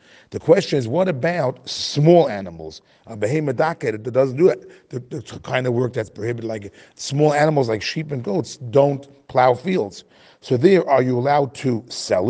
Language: English